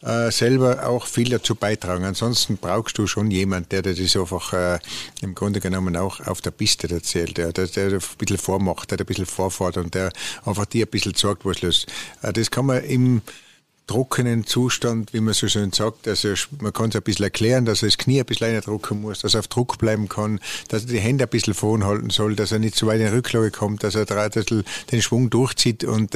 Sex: male